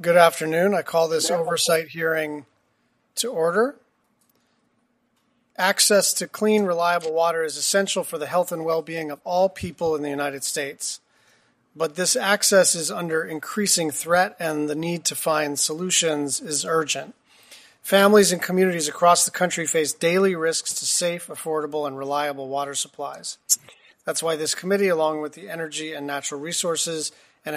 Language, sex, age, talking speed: English, male, 40-59, 155 wpm